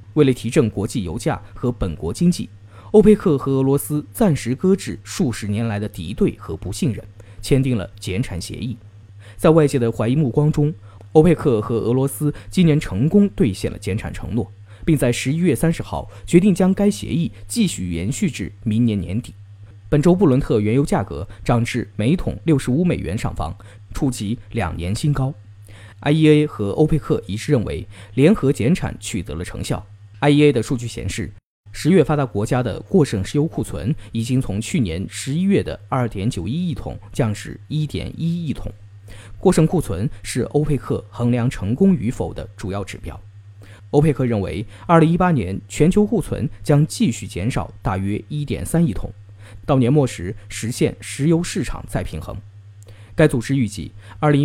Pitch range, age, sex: 100-150 Hz, 20-39, male